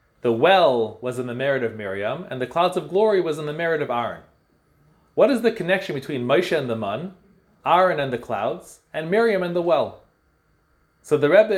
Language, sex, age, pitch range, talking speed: English, male, 30-49, 135-190 Hz, 205 wpm